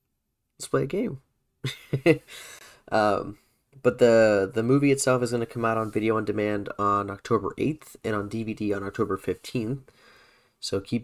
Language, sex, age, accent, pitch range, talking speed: English, male, 20-39, American, 100-125 Hz, 165 wpm